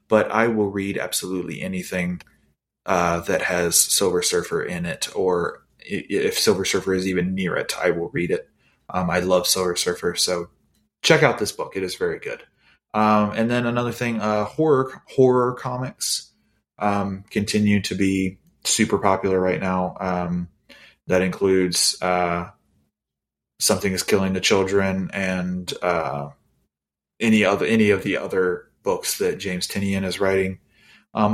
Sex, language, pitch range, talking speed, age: male, English, 90-115 Hz, 155 wpm, 20-39